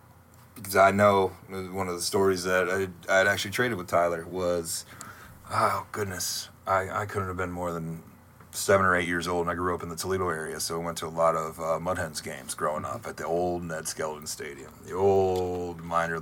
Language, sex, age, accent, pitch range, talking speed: English, male, 30-49, American, 85-100 Hz, 220 wpm